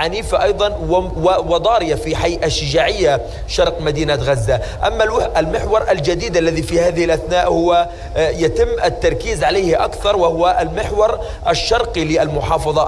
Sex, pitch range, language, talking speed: male, 155-180 Hz, Arabic, 120 wpm